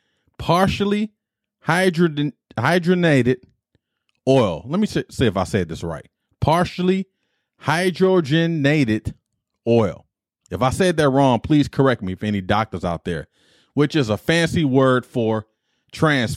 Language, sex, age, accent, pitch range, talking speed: English, male, 30-49, American, 110-165 Hz, 125 wpm